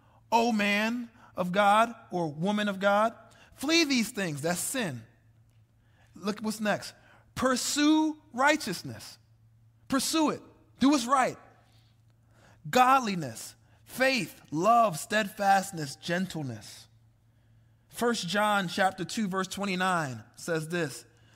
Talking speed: 105 wpm